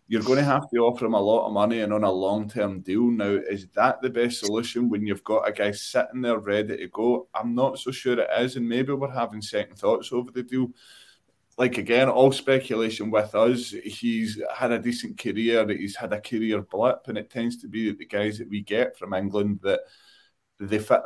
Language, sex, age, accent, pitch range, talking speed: English, male, 20-39, British, 105-120 Hz, 225 wpm